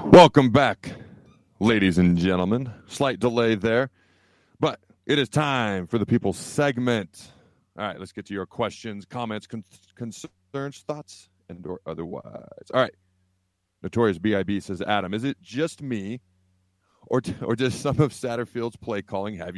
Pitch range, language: 95-120 Hz, English